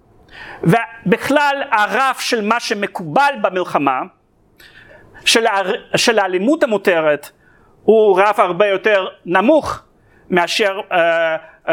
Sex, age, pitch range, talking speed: male, 40-59, 190-260 Hz, 85 wpm